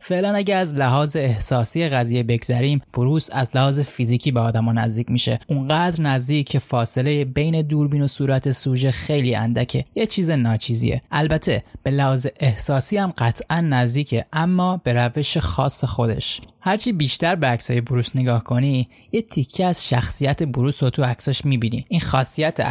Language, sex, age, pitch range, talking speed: Persian, male, 10-29, 125-150 Hz, 155 wpm